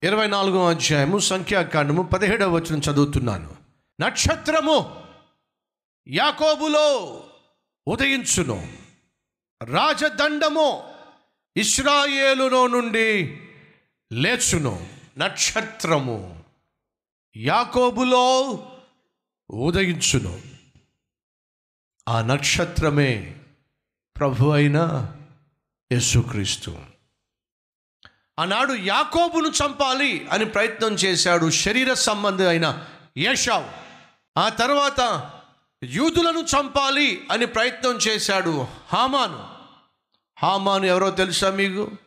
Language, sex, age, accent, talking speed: Telugu, male, 50-69, native, 60 wpm